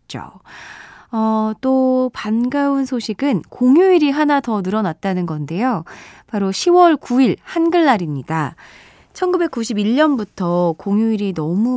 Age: 20-39